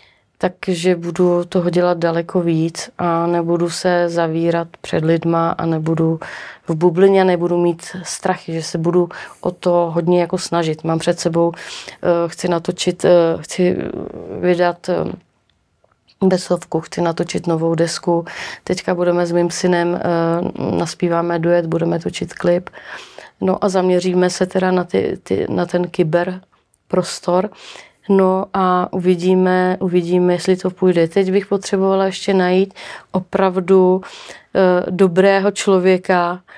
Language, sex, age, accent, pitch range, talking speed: Czech, female, 30-49, native, 175-190 Hz, 125 wpm